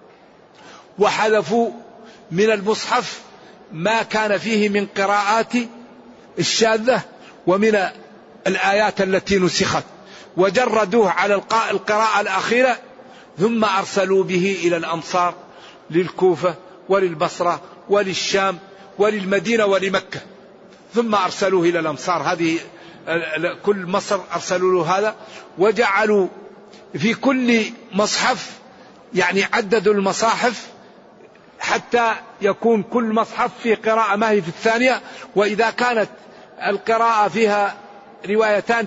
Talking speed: 90 wpm